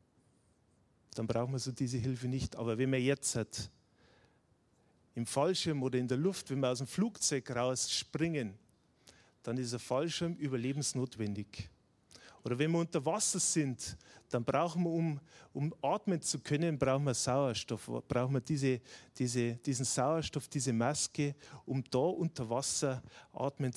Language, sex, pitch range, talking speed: German, male, 120-155 Hz, 145 wpm